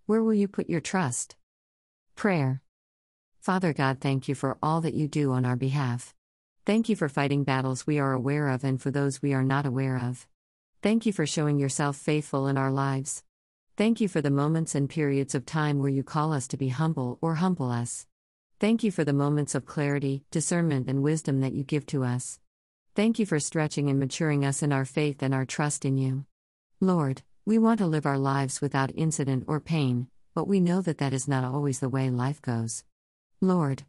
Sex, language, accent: female, English, American